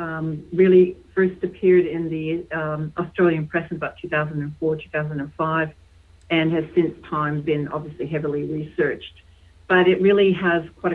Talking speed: 140 wpm